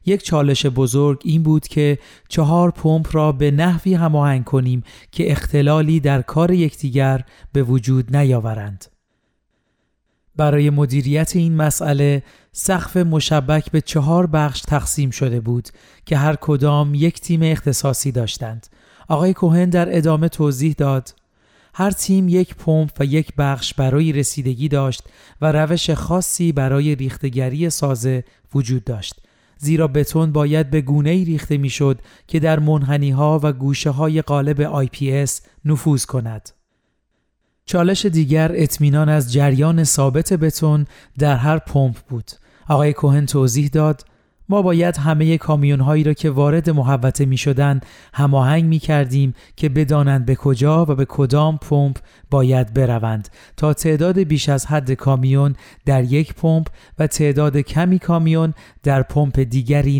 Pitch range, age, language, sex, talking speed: 135-155 Hz, 40-59, Persian, male, 135 wpm